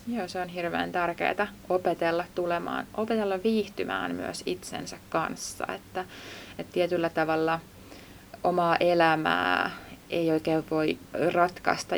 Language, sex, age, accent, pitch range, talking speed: Finnish, female, 20-39, native, 160-195 Hz, 110 wpm